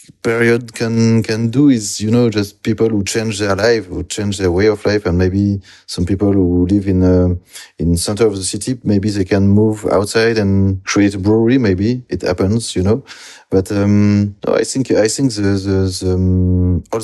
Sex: male